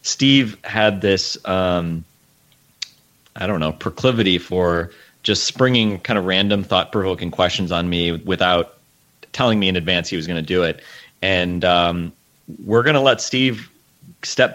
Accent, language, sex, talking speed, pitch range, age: American, English, male, 155 wpm, 85-105 Hz, 30-49